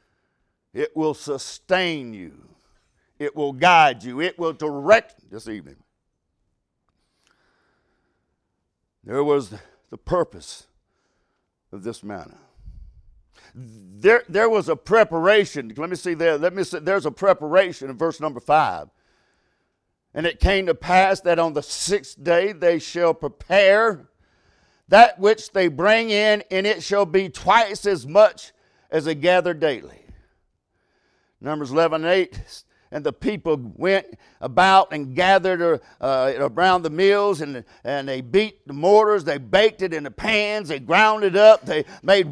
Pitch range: 155-210 Hz